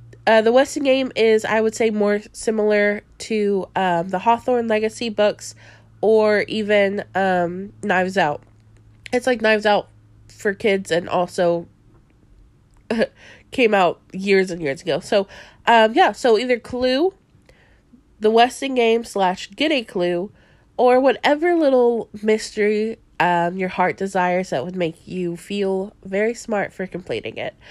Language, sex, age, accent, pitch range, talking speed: English, female, 20-39, American, 190-250 Hz, 145 wpm